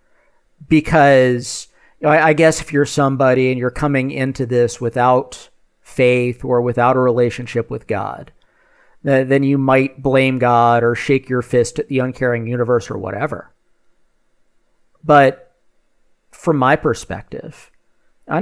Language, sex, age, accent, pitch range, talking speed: English, male, 40-59, American, 120-140 Hz, 125 wpm